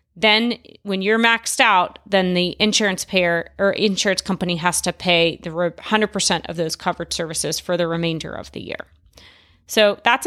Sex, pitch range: female, 175-220 Hz